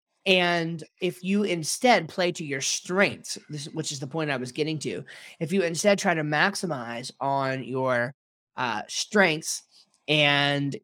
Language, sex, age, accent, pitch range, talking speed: English, male, 30-49, American, 145-180 Hz, 150 wpm